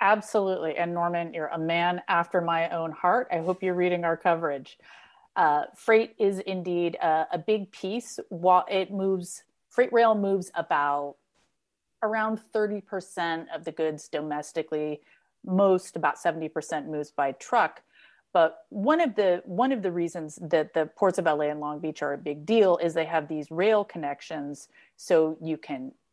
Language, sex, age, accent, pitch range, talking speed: English, female, 30-49, American, 155-195 Hz, 170 wpm